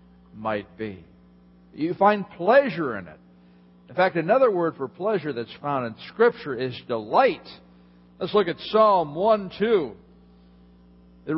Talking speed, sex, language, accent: 135 wpm, male, English, American